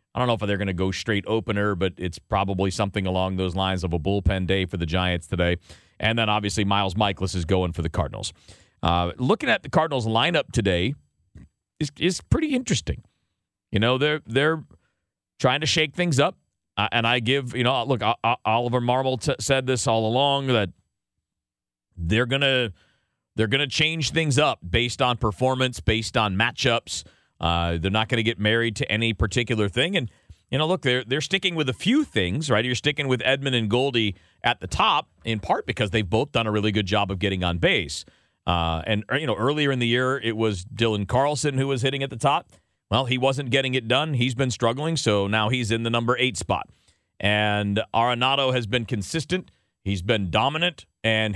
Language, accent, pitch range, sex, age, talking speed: English, American, 100-130 Hz, male, 40-59, 205 wpm